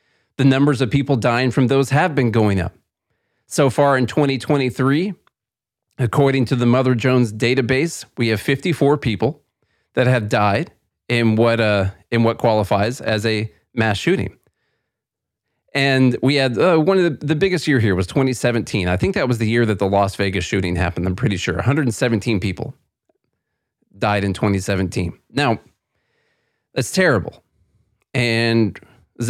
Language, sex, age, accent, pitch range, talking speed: English, male, 30-49, American, 105-130 Hz, 150 wpm